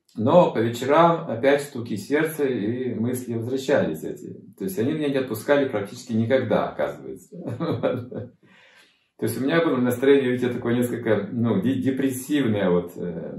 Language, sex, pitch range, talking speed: Russian, male, 115-145 Hz, 130 wpm